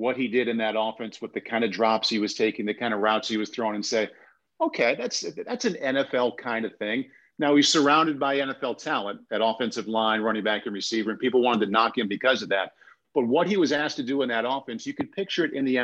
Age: 40-59